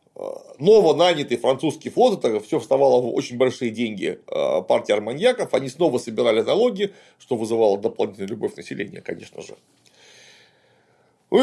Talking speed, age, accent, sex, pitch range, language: 130 wpm, 40-59, native, male, 150-225 Hz, Russian